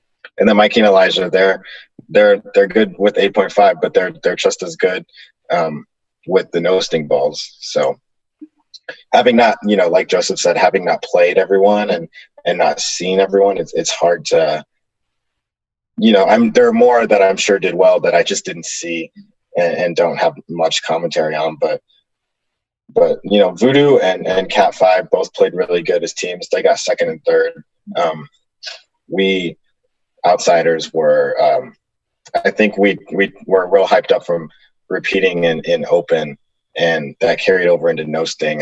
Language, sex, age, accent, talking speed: English, male, 20-39, American, 175 wpm